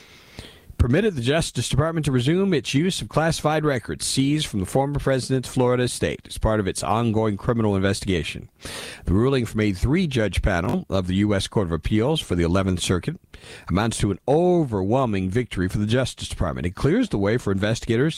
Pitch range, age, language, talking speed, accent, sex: 95-130 Hz, 50-69, English, 185 wpm, American, male